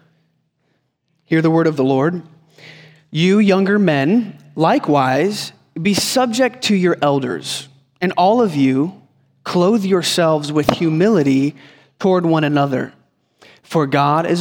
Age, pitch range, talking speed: 20-39, 140-175 Hz, 120 wpm